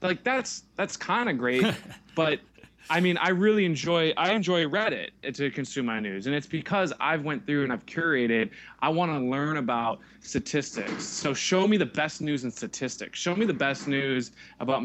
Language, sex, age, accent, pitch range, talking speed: English, male, 20-39, American, 120-160 Hz, 195 wpm